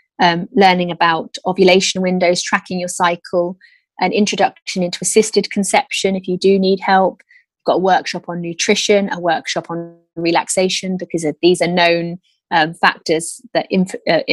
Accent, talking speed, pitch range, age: British, 145 wpm, 175-195 Hz, 20-39